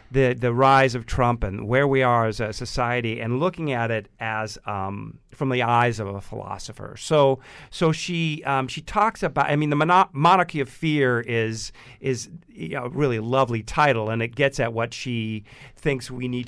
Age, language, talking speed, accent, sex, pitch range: 50-69, English, 195 wpm, American, male, 115-140 Hz